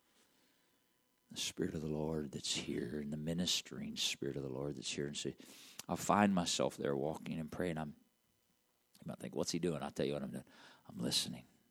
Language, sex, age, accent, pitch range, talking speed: English, male, 50-69, American, 80-110 Hz, 205 wpm